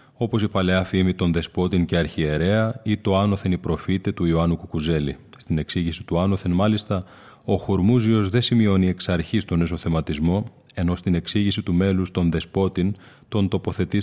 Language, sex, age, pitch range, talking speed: Greek, male, 30-49, 85-110 Hz, 160 wpm